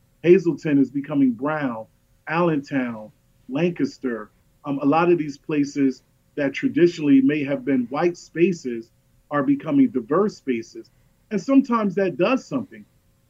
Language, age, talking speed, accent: English, 40-59, 125 wpm, American